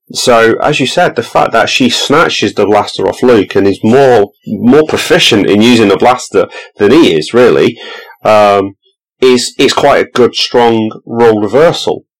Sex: male